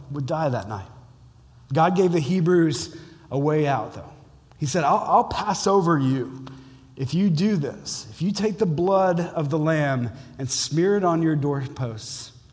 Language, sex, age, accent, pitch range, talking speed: English, male, 30-49, American, 135-175 Hz, 175 wpm